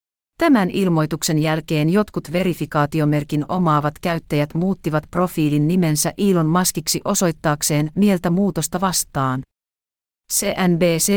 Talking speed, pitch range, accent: 90 wpm, 150-190 Hz, native